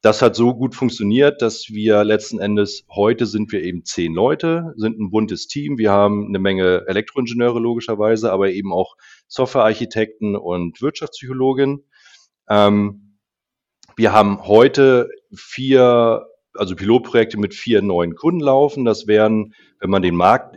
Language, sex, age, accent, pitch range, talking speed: German, male, 30-49, German, 100-120 Hz, 140 wpm